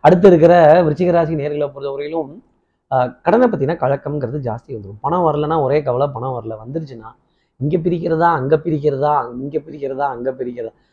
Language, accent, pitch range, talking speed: Tamil, native, 130-165 Hz, 135 wpm